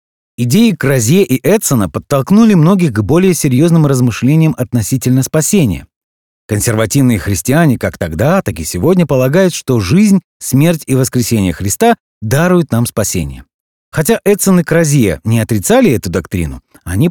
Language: Russian